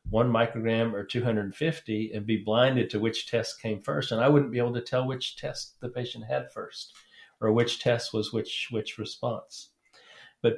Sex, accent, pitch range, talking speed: male, American, 100-115 Hz, 185 wpm